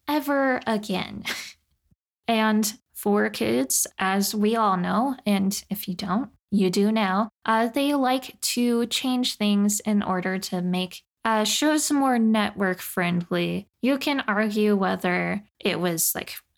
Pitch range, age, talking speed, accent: 190-250 Hz, 10-29, 140 wpm, American